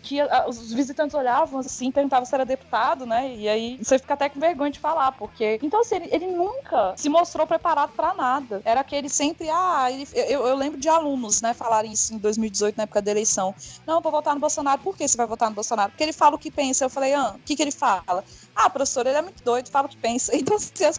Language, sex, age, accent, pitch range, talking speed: Portuguese, female, 20-39, Brazilian, 220-290 Hz, 250 wpm